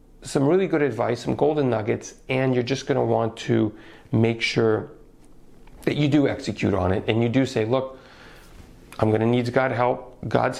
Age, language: 40-59, English